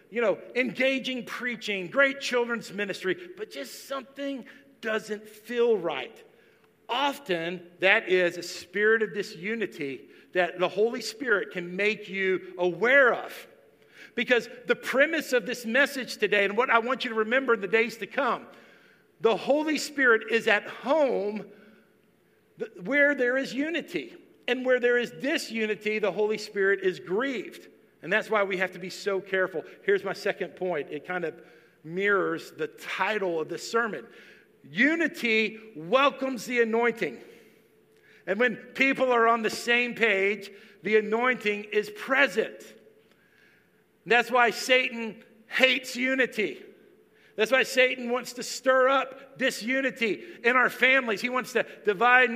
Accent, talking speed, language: American, 145 wpm, English